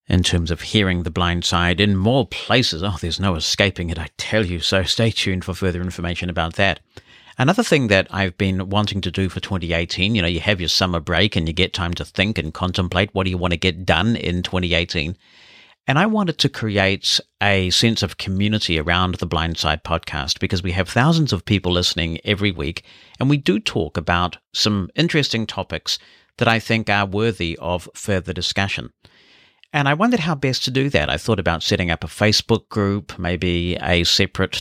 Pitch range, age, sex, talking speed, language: 85-110 Hz, 50-69, male, 205 wpm, English